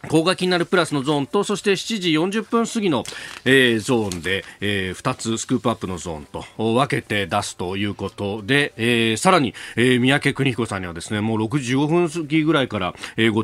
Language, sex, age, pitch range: Japanese, male, 40-59, 110-165 Hz